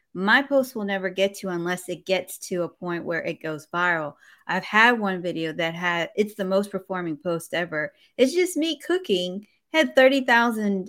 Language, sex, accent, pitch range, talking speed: English, female, American, 180-220 Hz, 185 wpm